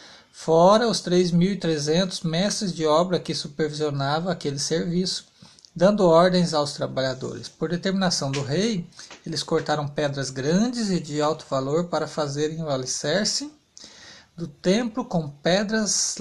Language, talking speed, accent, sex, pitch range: Portuguese, 125 wpm, Brazilian, male, 140-175 Hz